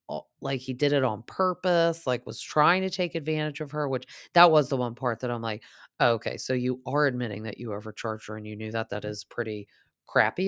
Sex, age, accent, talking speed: female, 20-39, American, 230 wpm